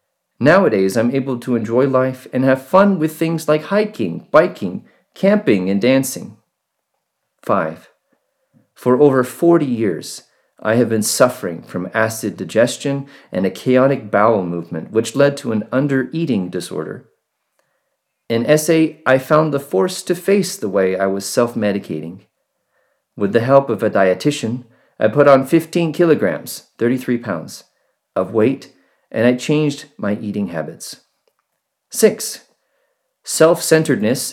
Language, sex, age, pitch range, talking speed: English, male, 40-59, 105-150 Hz, 135 wpm